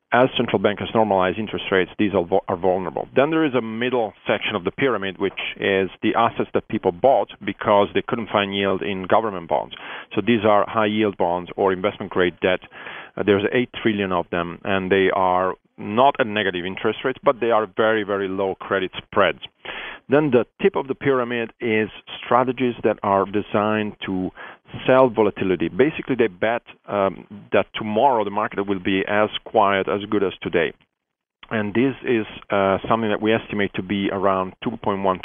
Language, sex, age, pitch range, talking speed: English, male, 40-59, 95-115 Hz, 180 wpm